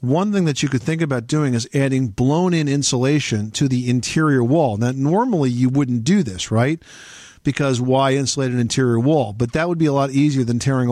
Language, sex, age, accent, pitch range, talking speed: English, male, 50-69, American, 115-145 Hz, 220 wpm